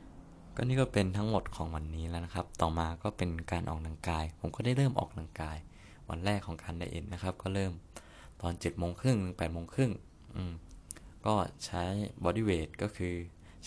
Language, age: Thai, 20-39